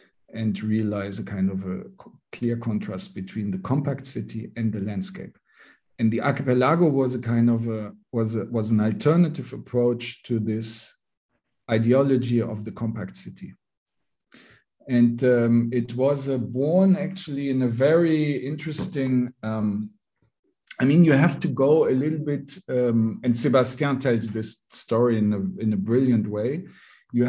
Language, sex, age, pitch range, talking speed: English, male, 50-69, 115-145 Hz, 155 wpm